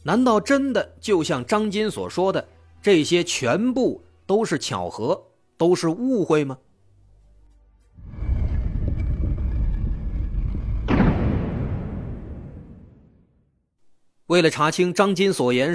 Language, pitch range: Chinese, 115-180 Hz